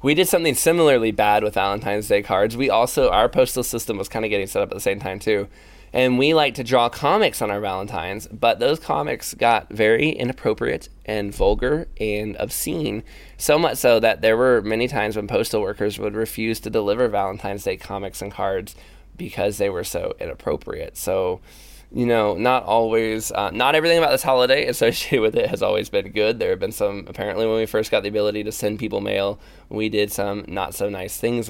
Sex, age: male, 20-39